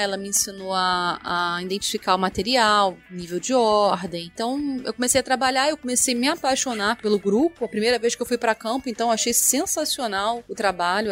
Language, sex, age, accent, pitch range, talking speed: Portuguese, female, 20-39, Brazilian, 210-255 Hz, 200 wpm